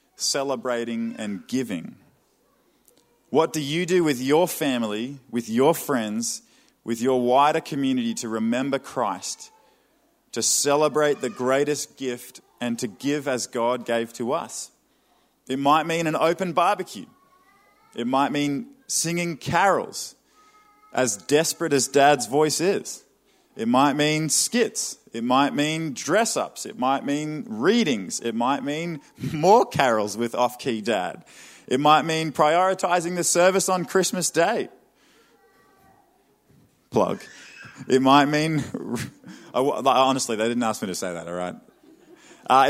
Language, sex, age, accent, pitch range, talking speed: English, male, 20-39, Australian, 125-180 Hz, 130 wpm